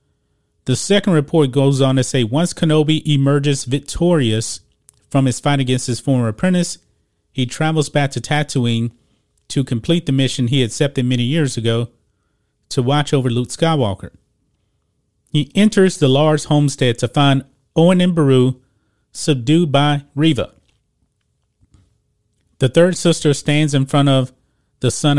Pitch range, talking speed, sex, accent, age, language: 120-150 Hz, 140 wpm, male, American, 30-49, English